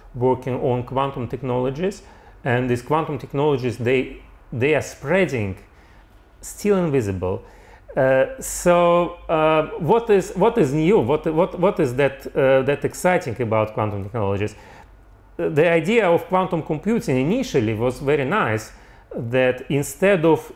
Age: 40-59